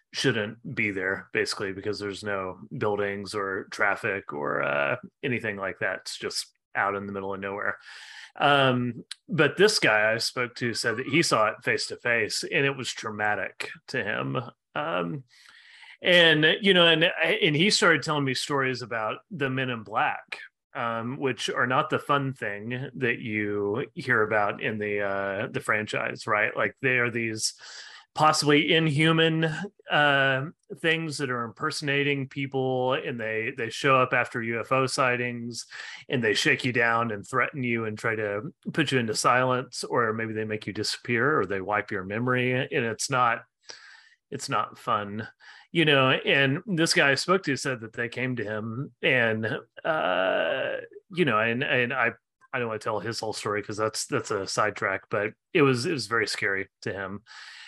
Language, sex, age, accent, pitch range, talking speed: English, male, 30-49, American, 110-145 Hz, 180 wpm